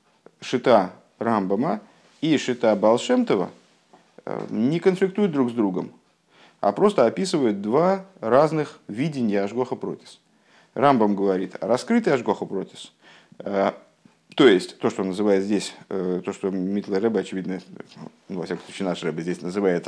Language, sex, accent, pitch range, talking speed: Russian, male, native, 95-125 Hz, 120 wpm